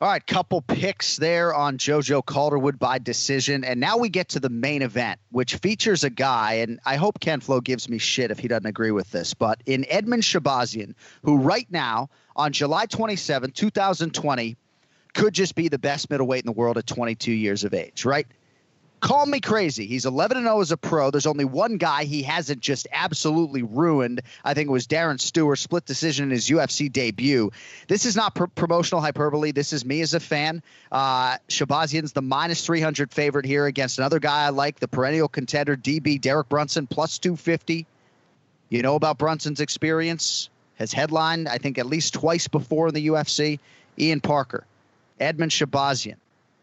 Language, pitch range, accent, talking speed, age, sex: English, 135-165 Hz, American, 185 wpm, 30-49, male